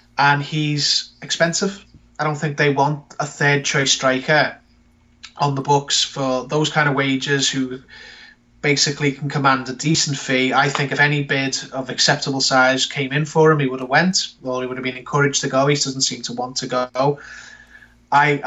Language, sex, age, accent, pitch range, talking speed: English, male, 20-39, British, 130-145 Hz, 190 wpm